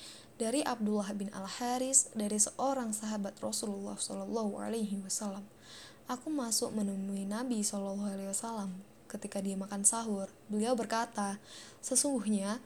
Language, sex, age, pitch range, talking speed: Indonesian, female, 10-29, 200-235 Hz, 125 wpm